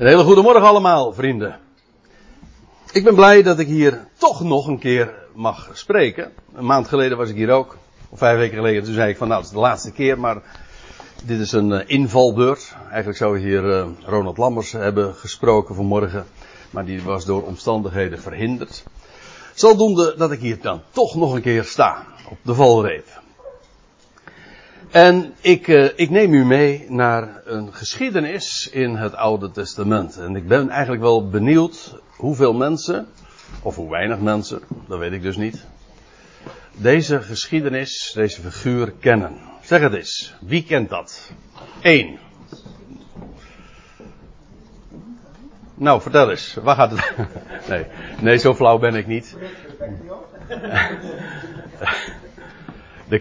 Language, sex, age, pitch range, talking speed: Dutch, male, 60-79, 105-145 Hz, 145 wpm